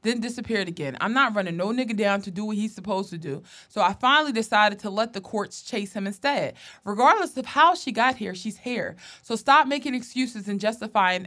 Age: 20-39